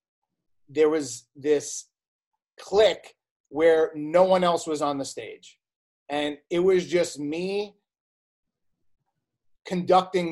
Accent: American